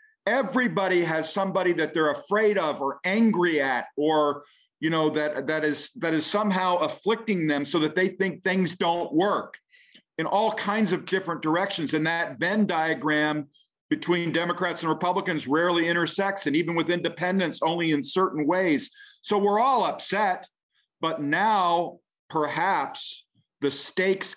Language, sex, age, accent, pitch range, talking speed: English, male, 50-69, American, 140-190 Hz, 150 wpm